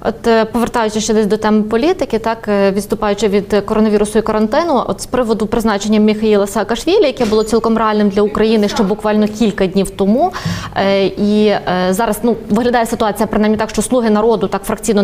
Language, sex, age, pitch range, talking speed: Russian, female, 20-39, 200-230 Hz, 175 wpm